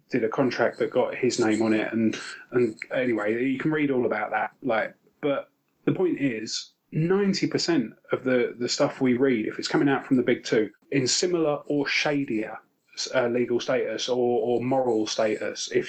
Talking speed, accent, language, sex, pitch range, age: 195 wpm, British, English, male, 125-160 Hz, 30-49